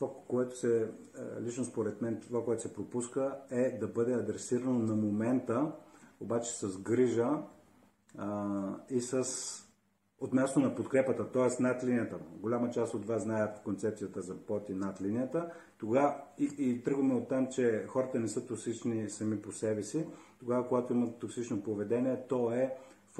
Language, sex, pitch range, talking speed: Bulgarian, male, 105-125 Hz, 155 wpm